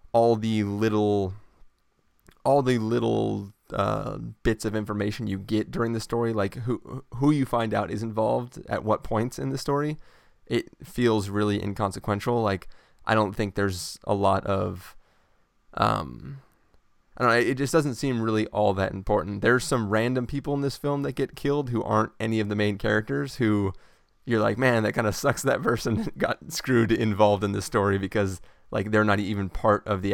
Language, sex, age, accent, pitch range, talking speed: English, male, 20-39, American, 95-115 Hz, 185 wpm